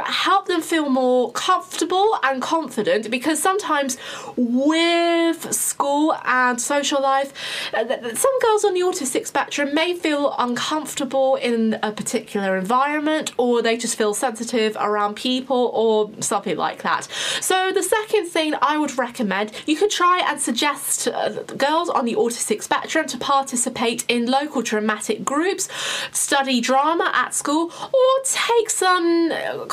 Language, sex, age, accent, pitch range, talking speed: English, female, 20-39, British, 240-325 Hz, 140 wpm